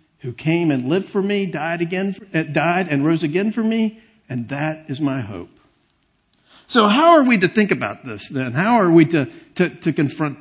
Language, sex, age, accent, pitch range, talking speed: English, male, 50-69, American, 130-175 Hz, 215 wpm